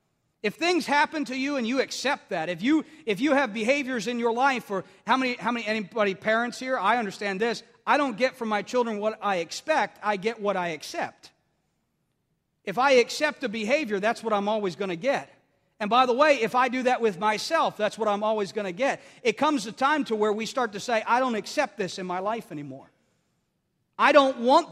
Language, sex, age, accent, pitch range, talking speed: English, male, 40-59, American, 215-280 Hz, 225 wpm